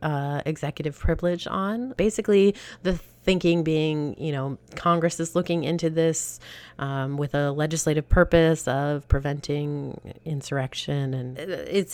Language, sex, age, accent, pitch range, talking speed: English, female, 30-49, American, 145-175 Hz, 125 wpm